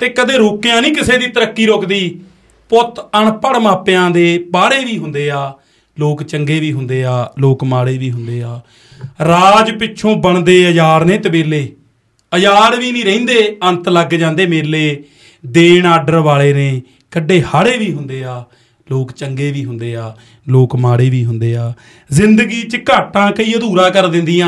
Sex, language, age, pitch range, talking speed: male, Punjabi, 30-49, 135-185 Hz, 155 wpm